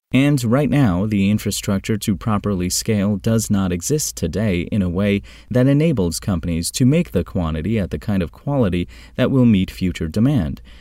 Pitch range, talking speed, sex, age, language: 90-115 Hz, 180 wpm, male, 30-49, English